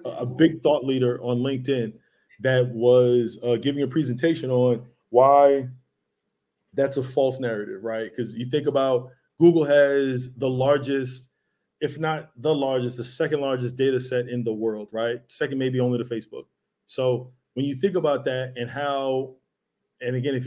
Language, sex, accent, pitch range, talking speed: English, male, American, 120-135 Hz, 165 wpm